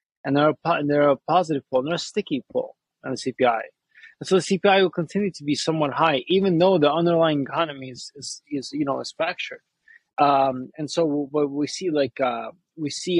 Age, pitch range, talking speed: 20-39, 135-175 Hz, 205 wpm